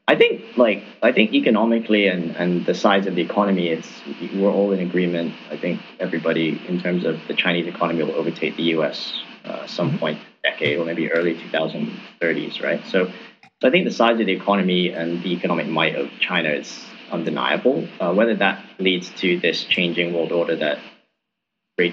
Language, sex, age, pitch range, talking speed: English, male, 30-49, 90-115 Hz, 190 wpm